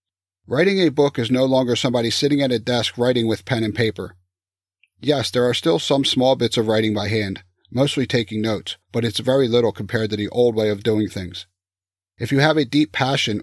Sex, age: male, 40-59